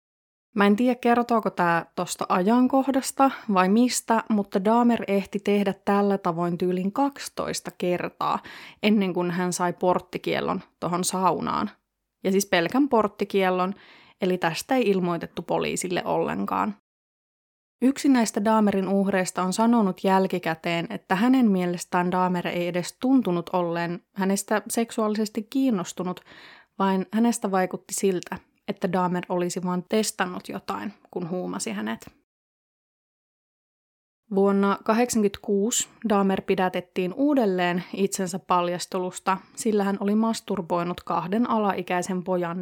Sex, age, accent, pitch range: female, 20-39, native, 180-220 Hz